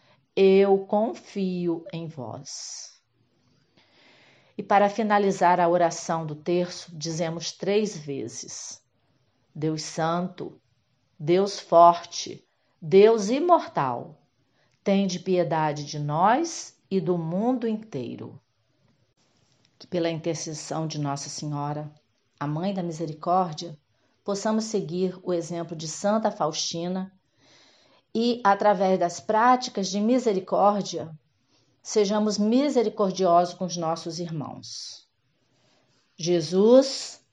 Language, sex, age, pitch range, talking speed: Portuguese, female, 40-59, 155-205 Hz, 95 wpm